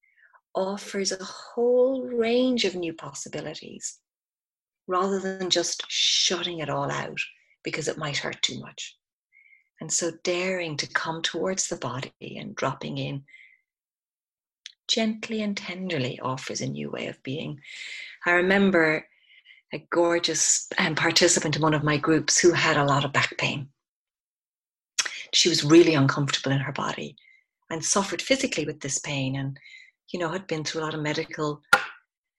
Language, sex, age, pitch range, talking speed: English, female, 40-59, 150-205 Hz, 150 wpm